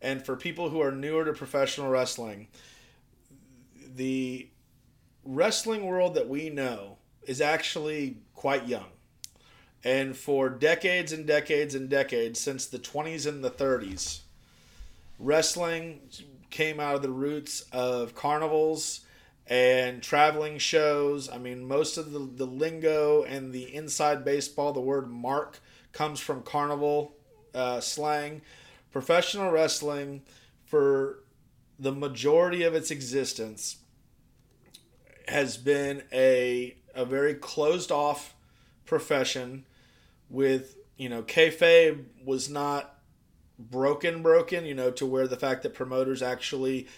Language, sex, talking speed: English, male, 120 wpm